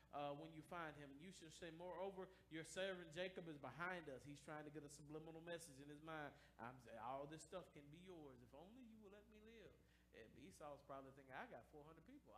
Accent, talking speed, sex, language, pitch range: American, 235 wpm, male, English, 145-195 Hz